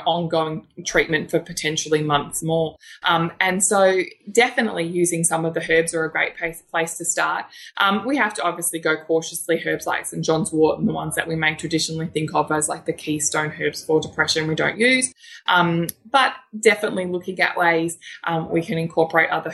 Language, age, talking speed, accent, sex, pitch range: English, 20-39, 195 wpm, Australian, female, 160-170 Hz